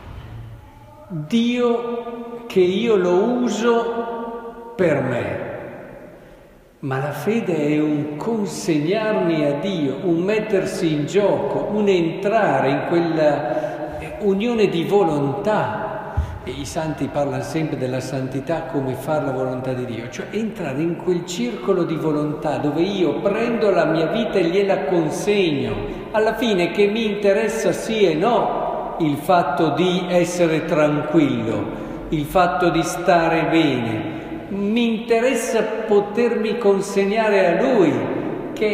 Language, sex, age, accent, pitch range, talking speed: Italian, male, 50-69, native, 155-210 Hz, 125 wpm